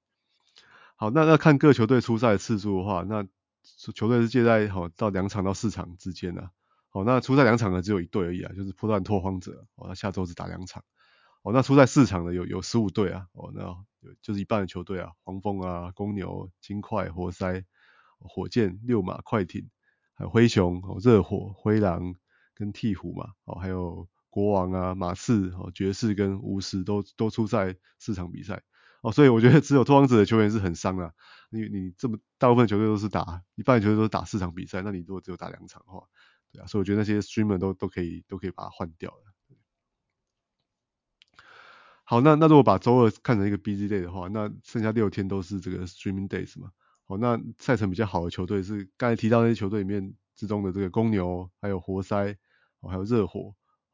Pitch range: 95-110 Hz